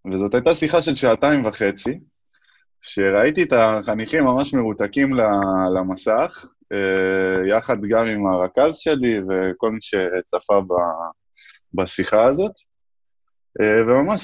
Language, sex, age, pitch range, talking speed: Hebrew, male, 20-39, 100-130 Hz, 95 wpm